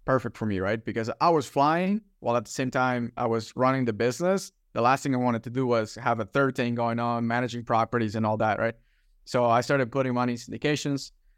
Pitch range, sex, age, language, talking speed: 110-125 Hz, male, 20-39, English, 235 wpm